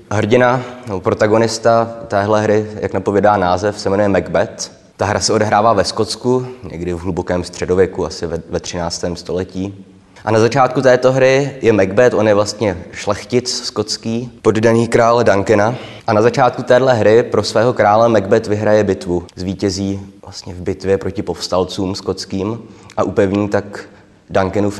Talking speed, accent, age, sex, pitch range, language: 150 wpm, native, 20-39, male, 95-115 Hz, Czech